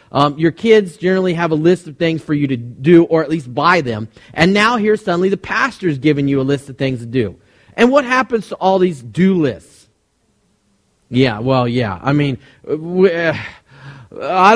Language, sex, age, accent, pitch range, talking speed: English, male, 40-59, American, 140-195 Hz, 195 wpm